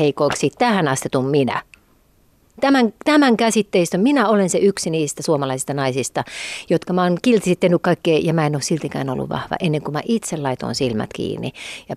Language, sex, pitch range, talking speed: Finnish, female, 150-205 Hz, 170 wpm